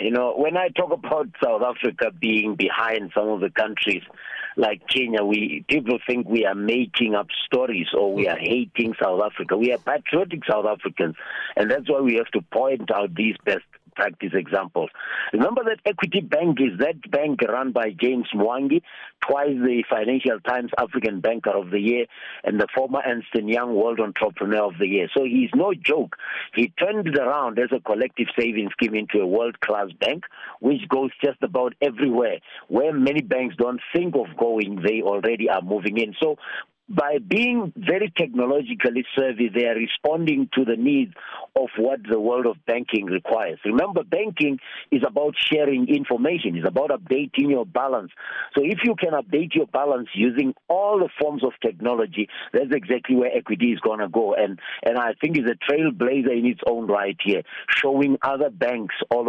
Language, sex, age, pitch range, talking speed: English, male, 50-69, 115-145 Hz, 180 wpm